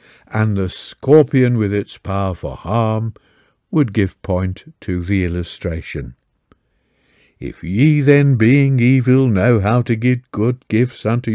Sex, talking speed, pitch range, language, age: male, 135 wpm, 95-125 Hz, English, 60-79